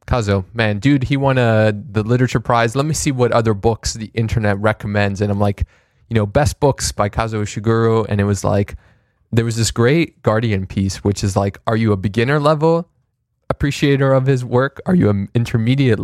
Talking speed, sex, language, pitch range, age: 200 wpm, male, English, 100-120 Hz, 20-39